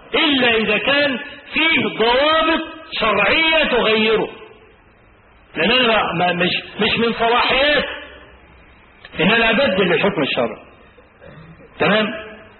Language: Arabic